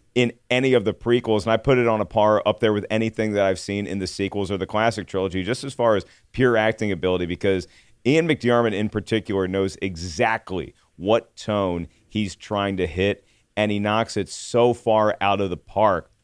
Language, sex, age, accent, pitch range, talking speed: English, male, 40-59, American, 95-115 Hz, 205 wpm